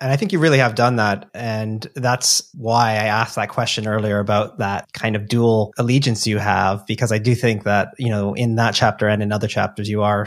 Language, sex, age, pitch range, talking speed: English, male, 30-49, 105-130 Hz, 235 wpm